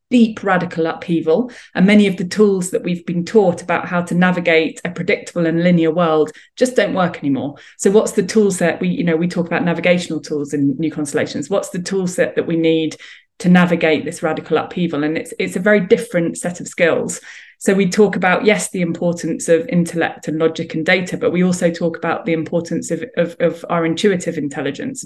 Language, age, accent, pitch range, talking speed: English, 20-39, British, 165-200 Hz, 210 wpm